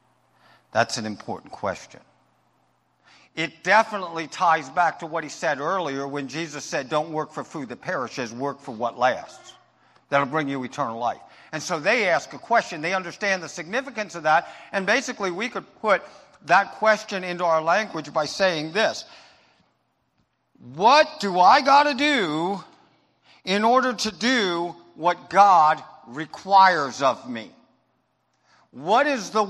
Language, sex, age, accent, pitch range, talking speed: English, male, 50-69, American, 150-200 Hz, 150 wpm